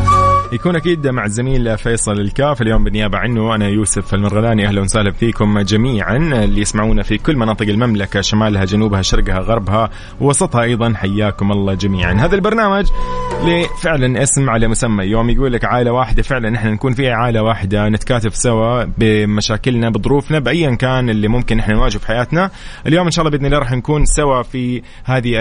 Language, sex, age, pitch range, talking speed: Arabic, male, 20-39, 105-130 Hz, 165 wpm